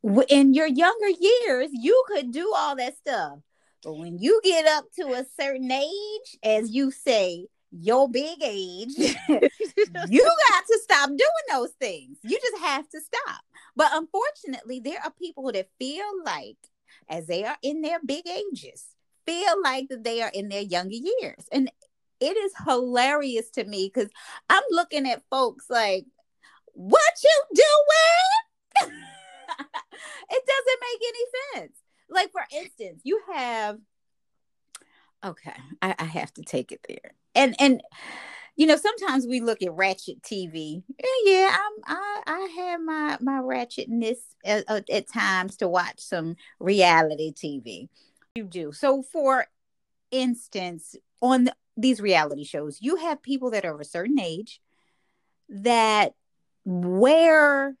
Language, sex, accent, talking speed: English, female, American, 140 wpm